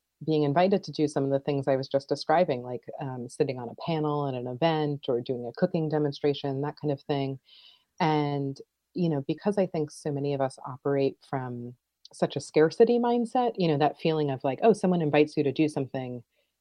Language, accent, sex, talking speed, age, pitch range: English, American, female, 215 wpm, 30-49, 140-175 Hz